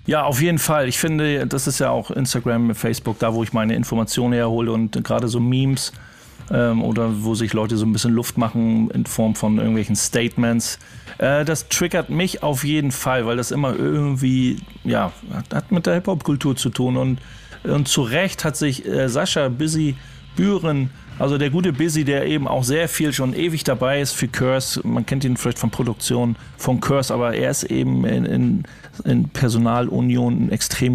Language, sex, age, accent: German, male, 40-59, German